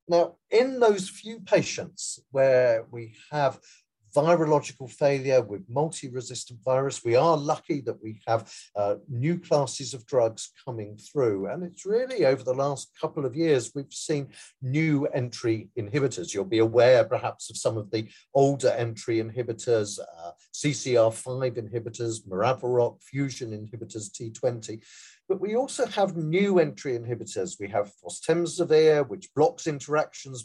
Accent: British